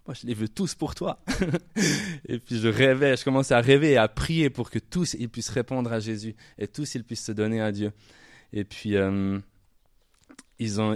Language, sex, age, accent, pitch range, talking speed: French, male, 20-39, French, 105-135 Hz, 220 wpm